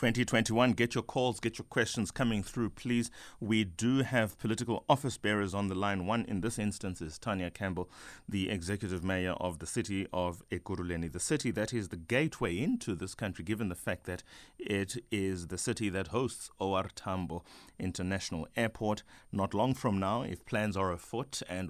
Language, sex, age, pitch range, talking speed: English, male, 30-49, 90-115 Hz, 180 wpm